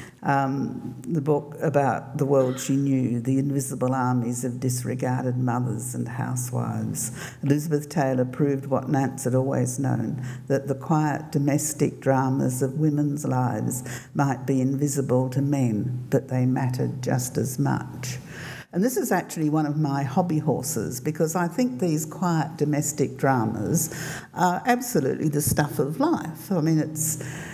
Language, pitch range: English, 130-165 Hz